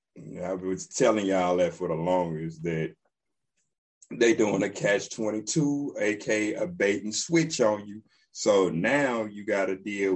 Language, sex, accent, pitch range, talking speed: English, male, American, 100-155 Hz, 140 wpm